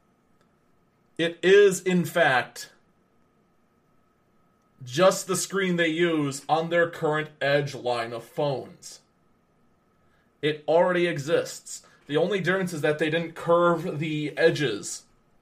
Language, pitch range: English, 115-170 Hz